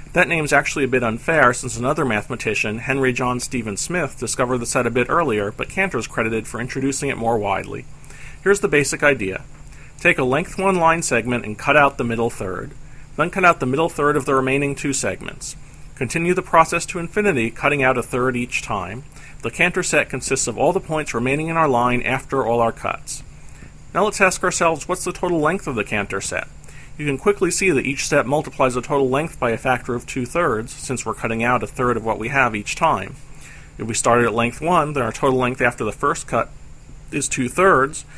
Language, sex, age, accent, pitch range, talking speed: English, male, 40-59, American, 120-155 Hz, 215 wpm